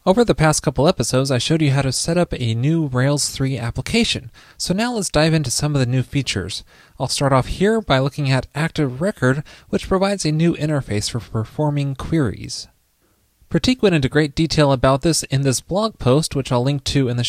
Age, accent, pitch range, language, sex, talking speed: 20-39, American, 125-165 Hz, English, male, 210 wpm